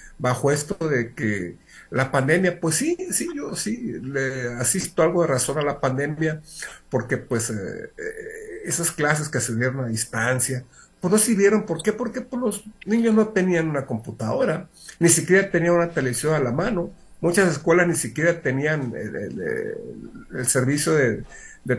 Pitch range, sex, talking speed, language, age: 125-175 Hz, male, 165 wpm, Spanish, 50-69